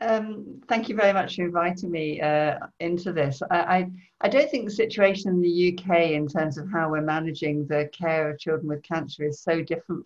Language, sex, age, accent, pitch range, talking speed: English, female, 50-69, British, 150-180 Hz, 215 wpm